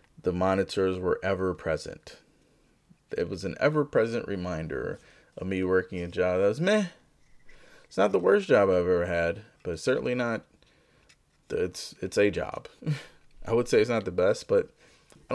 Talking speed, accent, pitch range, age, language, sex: 165 wpm, American, 95-155 Hz, 30-49, English, male